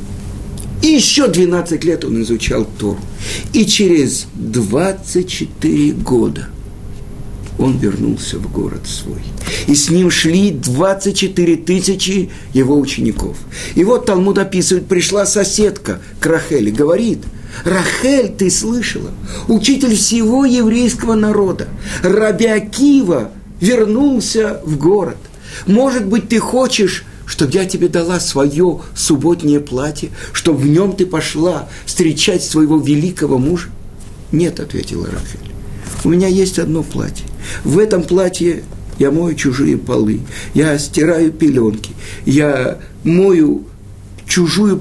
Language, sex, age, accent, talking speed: Russian, male, 60-79, native, 115 wpm